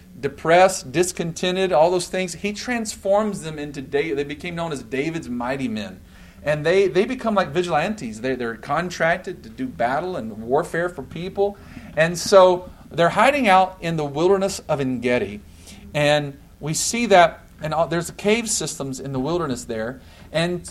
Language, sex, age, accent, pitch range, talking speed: English, male, 40-59, American, 140-190 Hz, 160 wpm